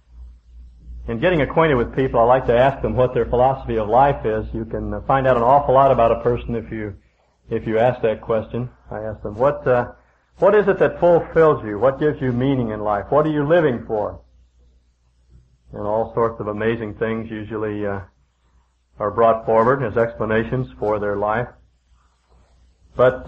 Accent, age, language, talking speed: American, 50-69, English, 185 wpm